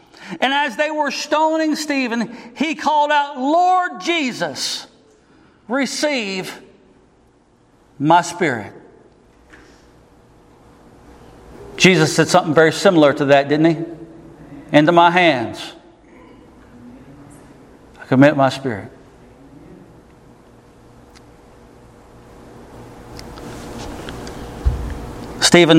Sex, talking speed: male, 70 wpm